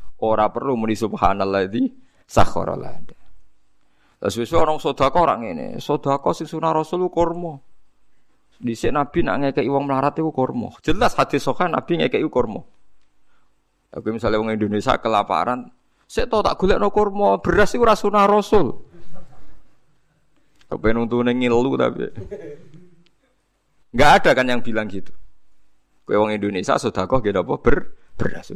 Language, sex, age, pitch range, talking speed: Indonesian, male, 50-69, 105-150 Hz, 100 wpm